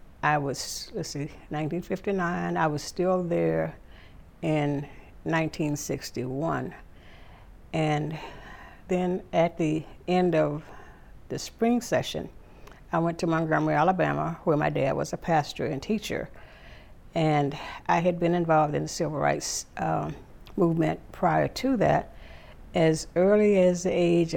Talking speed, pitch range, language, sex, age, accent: 130 wpm, 135-175 Hz, English, female, 60-79, American